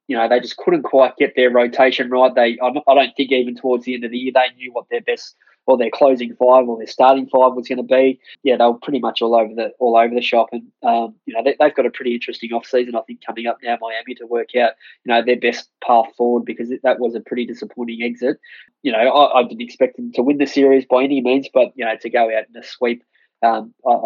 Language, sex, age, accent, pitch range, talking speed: English, male, 20-39, Australian, 115-130 Hz, 270 wpm